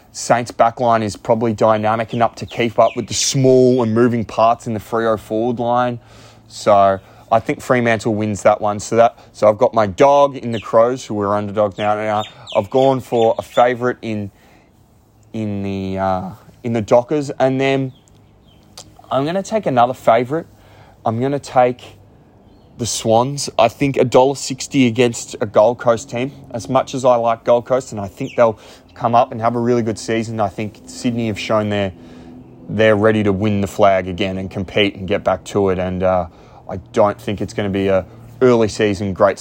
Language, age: English, 20-39